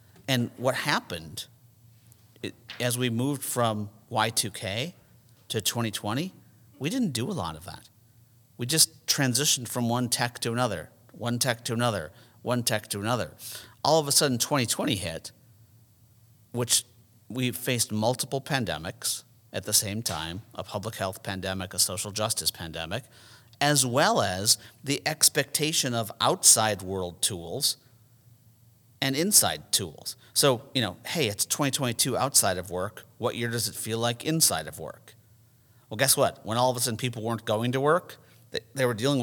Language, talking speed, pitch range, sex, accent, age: English, 160 wpm, 110-125 Hz, male, American, 50-69